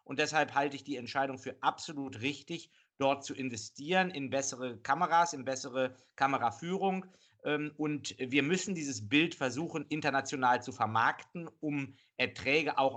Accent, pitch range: German, 130-155 Hz